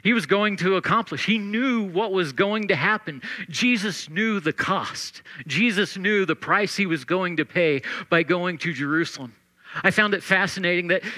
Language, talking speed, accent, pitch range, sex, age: English, 185 wpm, American, 170-215 Hz, male, 50-69